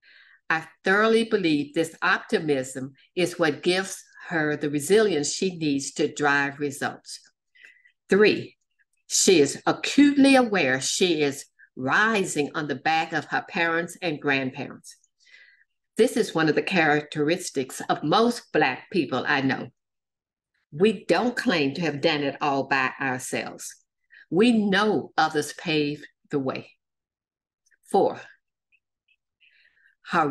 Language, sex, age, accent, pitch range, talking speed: English, female, 60-79, American, 150-210 Hz, 125 wpm